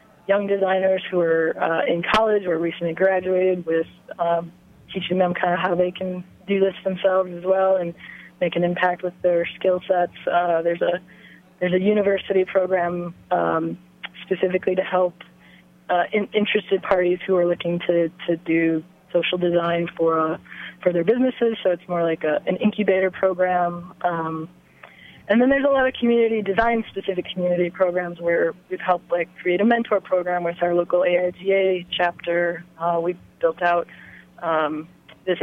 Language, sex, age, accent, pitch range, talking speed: English, female, 20-39, American, 170-190 Hz, 165 wpm